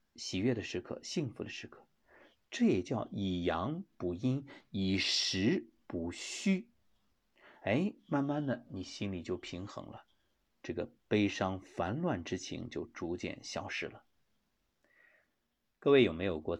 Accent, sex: native, male